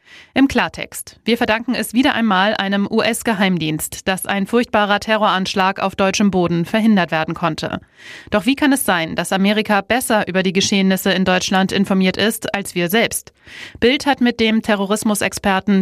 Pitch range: 190-225 Hz